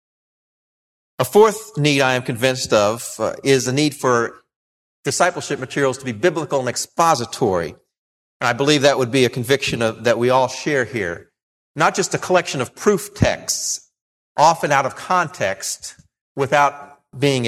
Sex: male